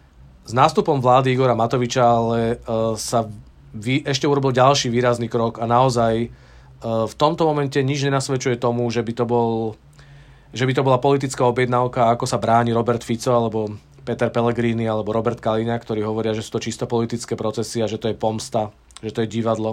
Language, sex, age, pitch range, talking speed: Czech, male, 40-59, 110-130 Hz, 185 wpm